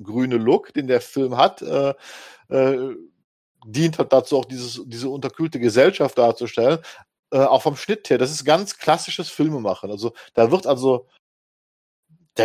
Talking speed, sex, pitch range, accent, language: 155 wpm, male, 120-150 Hz, German, German